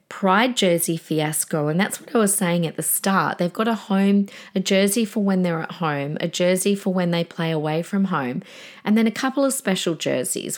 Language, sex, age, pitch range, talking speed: English, female, 40-59, 165-220 Hz, 220 wpm